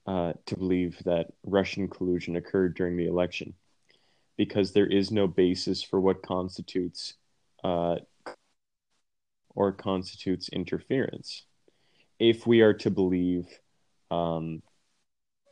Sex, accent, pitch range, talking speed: male, American, 85-95 Hz, 110 wpm